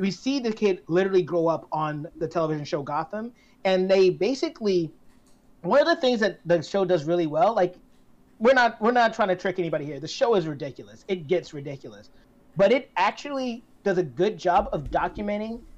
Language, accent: English, American